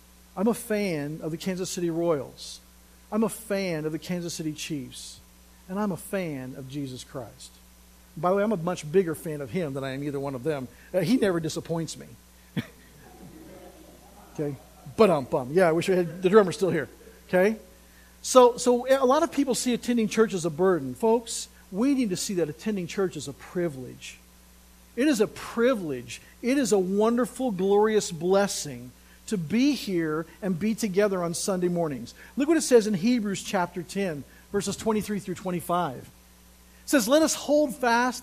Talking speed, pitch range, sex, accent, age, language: 185 wpm, 155-230 Hz, male, American, 50-69, English